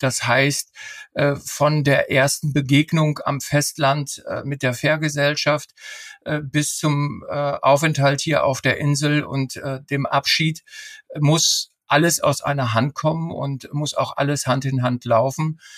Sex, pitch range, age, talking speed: male, 135-155 Hz, 50-69, 135 wpm